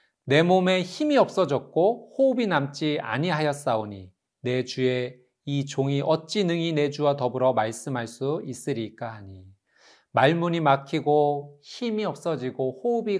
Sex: male